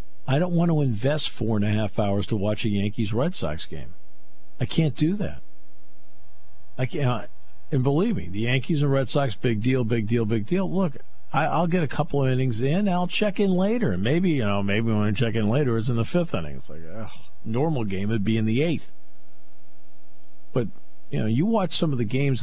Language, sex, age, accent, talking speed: English, male, 50-69, American, 220 wpm